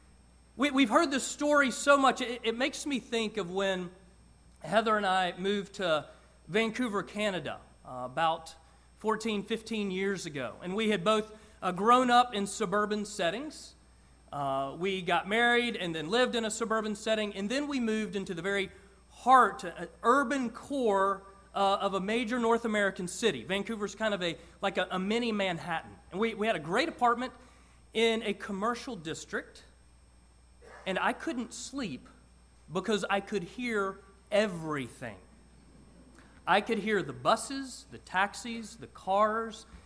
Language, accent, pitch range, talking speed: English, American, 165-230 Hz, 155 wpm